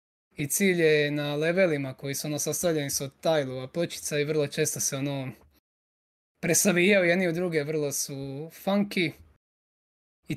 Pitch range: 135-160 Hz